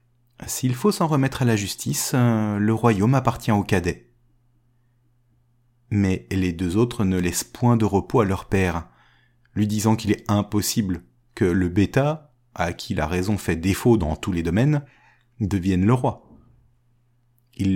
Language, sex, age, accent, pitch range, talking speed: French, male, 30-49, French, 100-125 Hz, 155 wpm